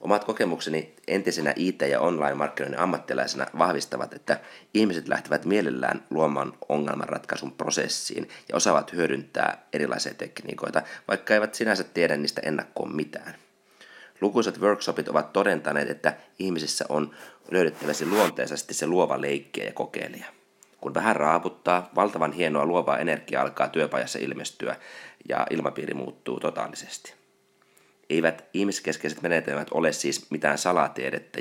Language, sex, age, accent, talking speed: Finnish, male, 30-49, native, 120 wpm